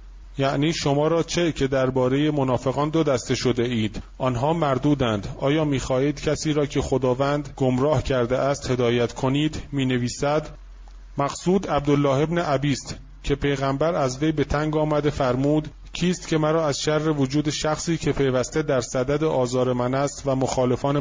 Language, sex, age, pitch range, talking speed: Persian, male, 30-49, 130-155 Hz, 150 wpm